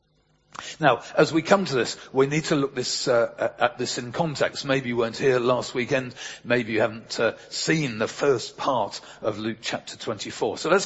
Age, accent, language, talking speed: 50-69, British, English, 200 wpm